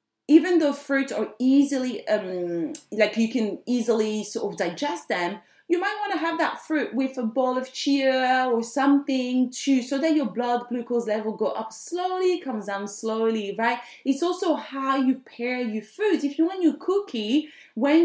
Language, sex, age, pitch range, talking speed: English, female, 30-49, 205-275 Hz, 185 wpm